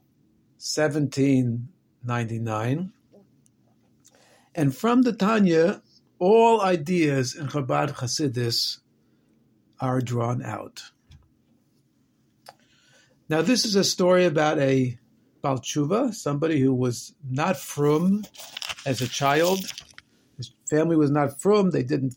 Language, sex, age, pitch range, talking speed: English, male, 50-69, 130-180 Hz, 95 wpm